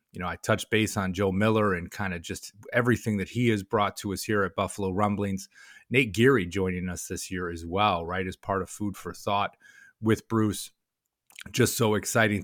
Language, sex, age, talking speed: English, male, 30-49, 205 wpm